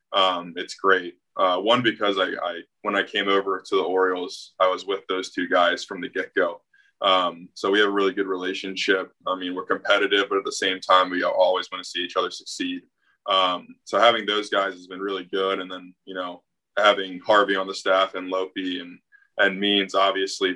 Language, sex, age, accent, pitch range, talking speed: English, male, 20-39, American, 90-105 Hz, 215 wpm